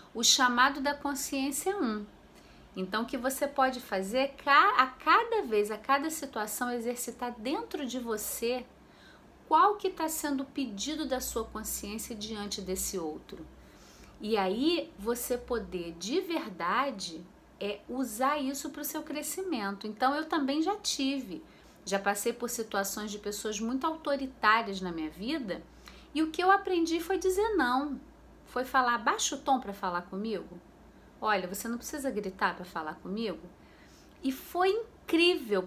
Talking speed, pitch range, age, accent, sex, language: 150 wpm, 215-295 Hz, 40-59, Brazilian, female, Portuguese